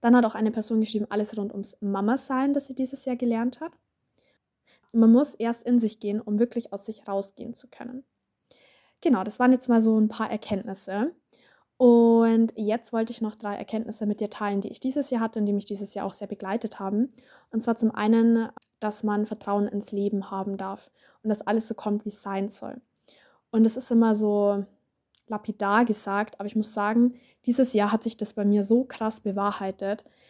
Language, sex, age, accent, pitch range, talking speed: German, female, 20-39, German, 205-235 Hz, 205 wpm